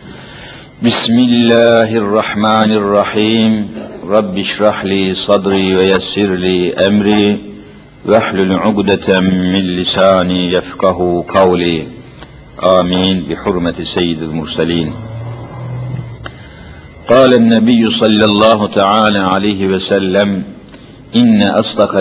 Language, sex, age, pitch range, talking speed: Turkish, male, 50-69, 90-110 Hz, 80 wpm